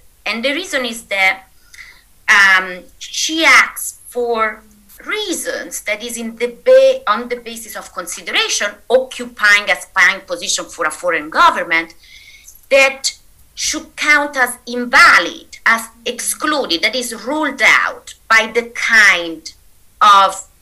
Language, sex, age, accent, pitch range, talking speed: English, female, 30-49, Italian, 190-275 Hz, 125 wpm